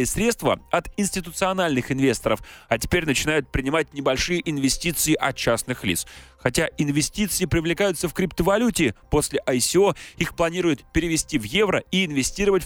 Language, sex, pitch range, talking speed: Russian, male, 135-195 Hz, 130 wpm